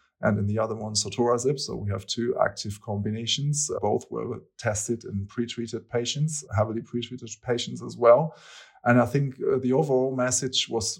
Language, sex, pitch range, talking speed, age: English, male, 105-120 Hz, 165 wpm, 30-49